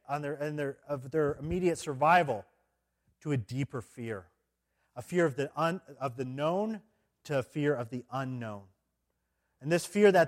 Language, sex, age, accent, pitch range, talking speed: English, male, 40-59, American, 105-165 Hz, 175 wpm